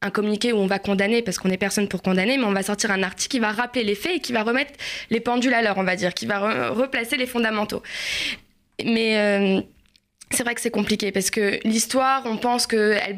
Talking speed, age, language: 235 wpm, 20-39, French